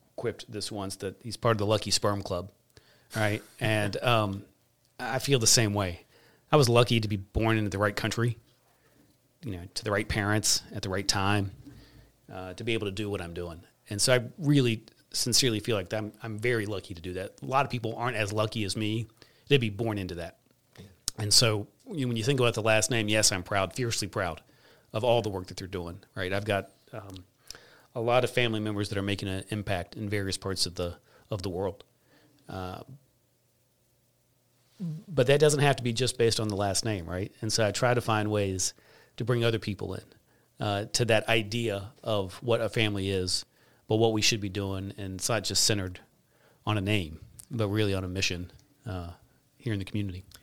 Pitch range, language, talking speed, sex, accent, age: 100-120 Hz, English, 210 wpm, male, American, 40-59